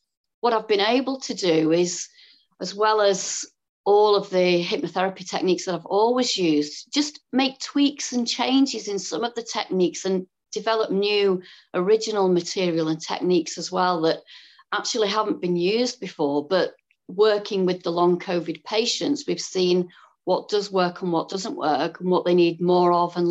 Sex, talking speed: female, 170 wpm